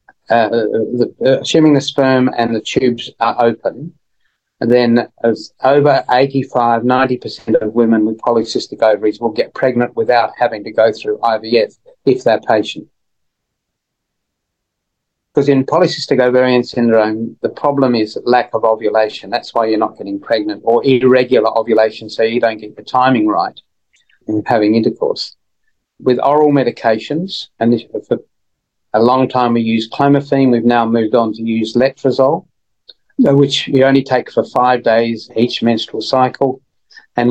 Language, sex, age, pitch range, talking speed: English, male, 40-59, 115-135 Hz, 145 wpm